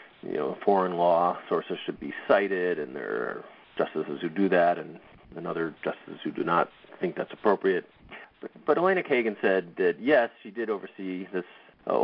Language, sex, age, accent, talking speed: English, male, 30-49, American, 185 wpm